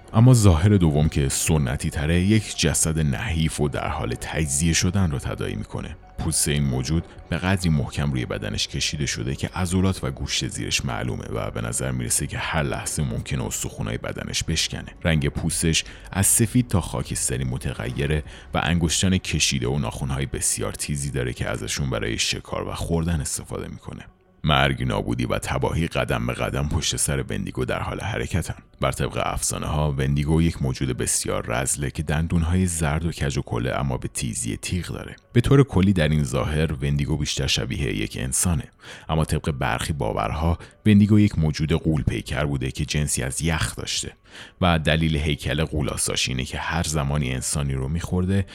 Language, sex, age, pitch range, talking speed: Persian, male, 30-49, 70-95 Hz, 175 wpm